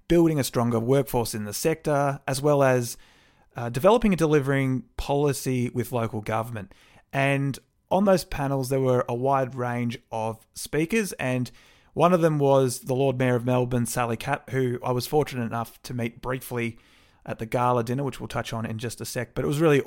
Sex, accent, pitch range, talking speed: male, Australian, 115-135 Hz, 195 wpm